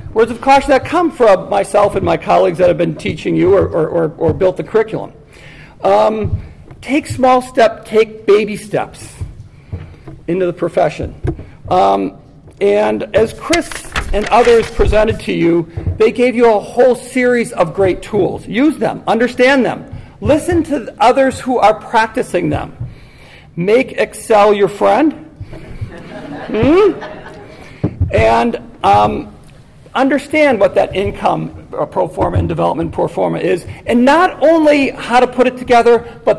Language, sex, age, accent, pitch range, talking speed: English, male, 50-69, American, 180-250 Hz, 145 wpm